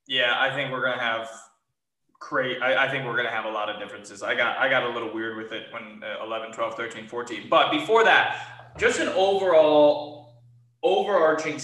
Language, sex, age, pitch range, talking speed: English, male, 20-39, 135-200 Hz, 200 wpm